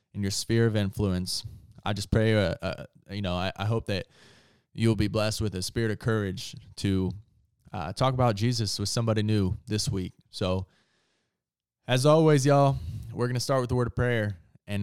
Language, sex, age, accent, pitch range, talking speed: English, male, 20-39, American, 100-120 Hz, 195 wpm